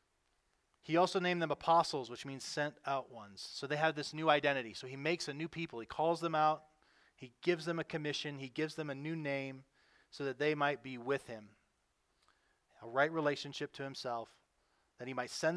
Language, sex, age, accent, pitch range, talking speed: English, male, 30-49, American, 130-170 Hz, 205 wpm